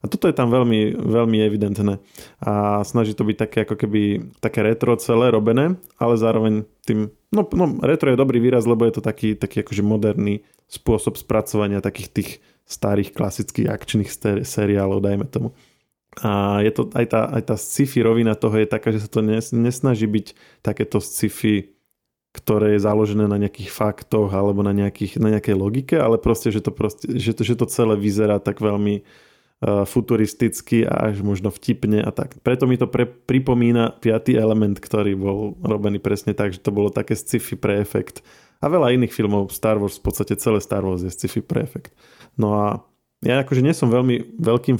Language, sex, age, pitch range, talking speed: Slovak, male, 20-39, 105-120 Hz, 185 wpm